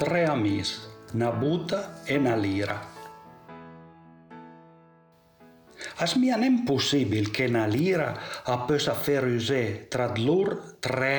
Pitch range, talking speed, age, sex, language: 110-155 Hz, 90 wpm, 60-79, male, Italian